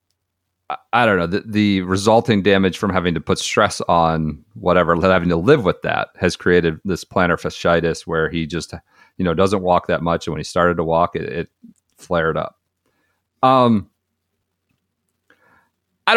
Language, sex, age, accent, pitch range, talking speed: English, male, 40-59, American, 85-110 Hz, 165 wpm